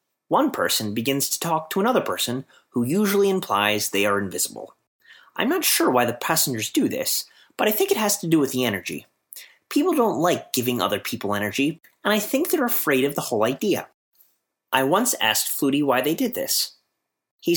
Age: 30-49